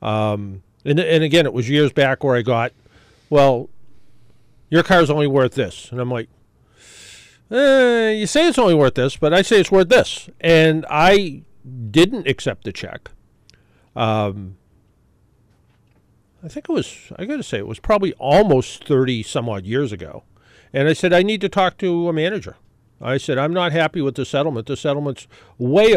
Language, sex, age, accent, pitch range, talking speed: English, male, 50-69, American, 115-165 Hz, 185 wpm